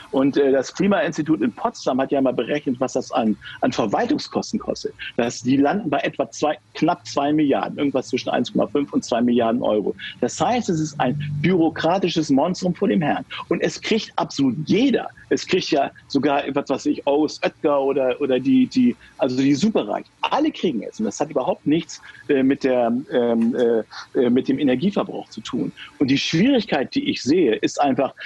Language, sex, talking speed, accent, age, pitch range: German, male, 185 wpm, German, 50-69, 135-180 Hz